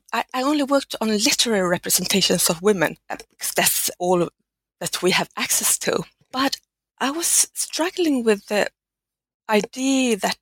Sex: female